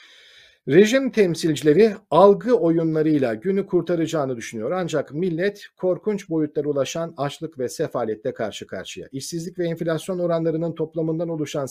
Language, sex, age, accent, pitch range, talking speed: Turkish, male, 50-69, native, 135-185 Hz, 120 wpm